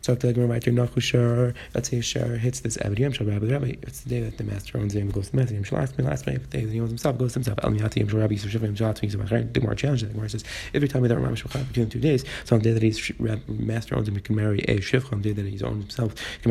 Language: English